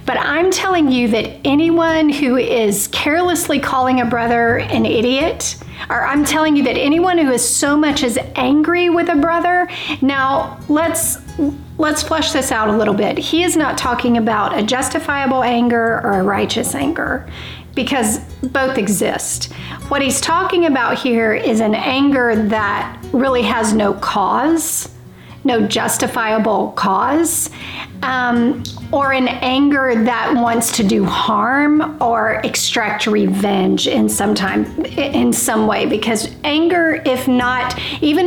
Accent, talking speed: American, 145 wpm